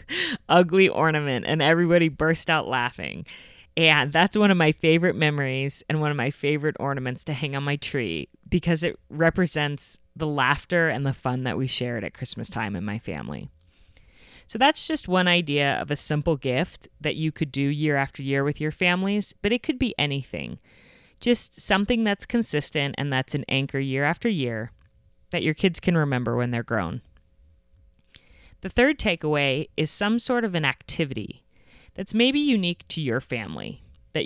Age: 30-49